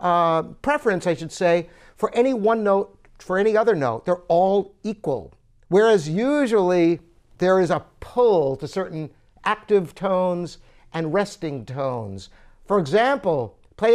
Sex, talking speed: male, 140 wpm